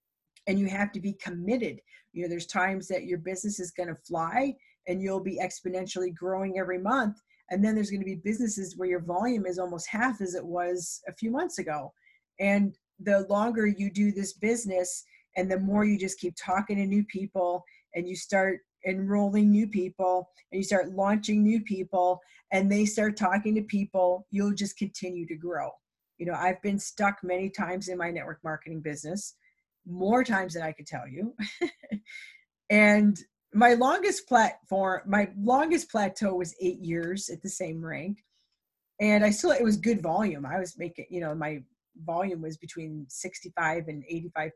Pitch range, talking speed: 180-215 Hz, 185 wpm